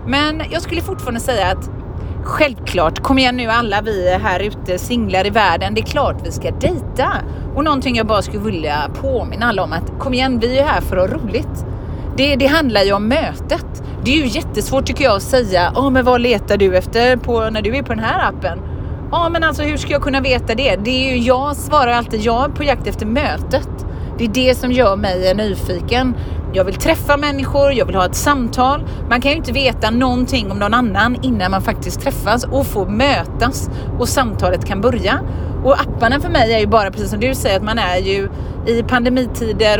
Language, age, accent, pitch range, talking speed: English, 30-49, Swedish, 220-275 Hz, 215 wpm